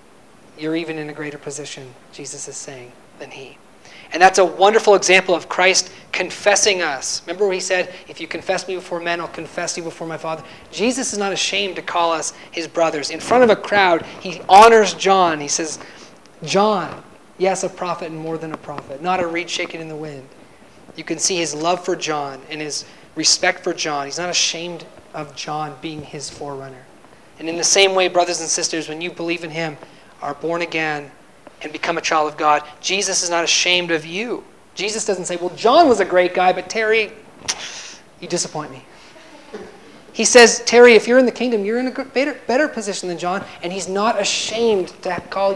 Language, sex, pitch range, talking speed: English, male, 155-190 Hz, 205 wpm